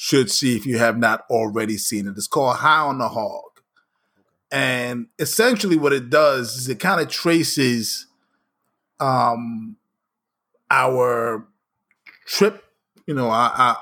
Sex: male